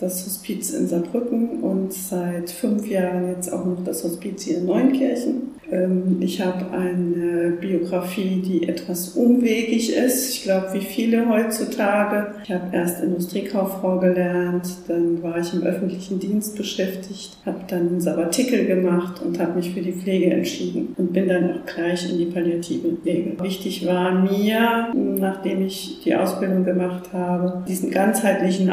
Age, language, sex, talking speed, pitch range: 40-59, German, female, 150 wpm, 175-190 Hz